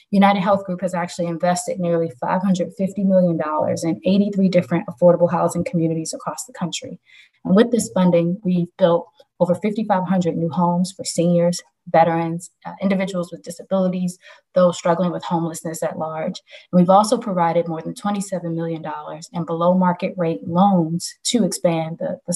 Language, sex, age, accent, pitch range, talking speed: English, female, 20-39, American, 170-190 Hz, 155 wpm